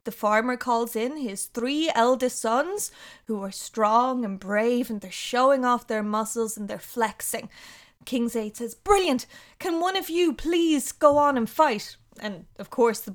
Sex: female